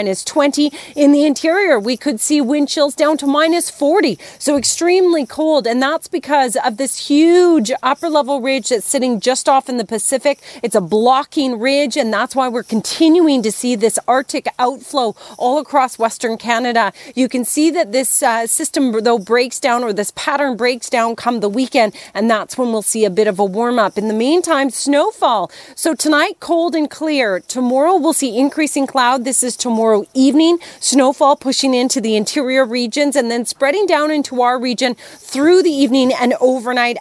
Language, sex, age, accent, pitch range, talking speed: English, female, 30-49, American, 230-290 Hz, 190 wpm